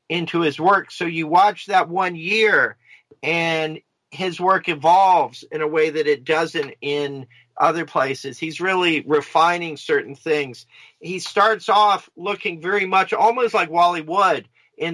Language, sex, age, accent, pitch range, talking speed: English, male, 50-69, American, 150-180 Hz, 155 wpm